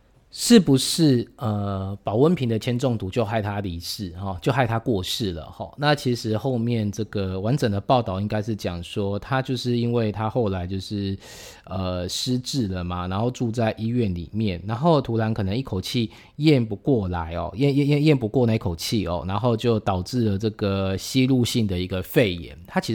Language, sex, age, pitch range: Chinese, male, 20-39, 95-125 Hz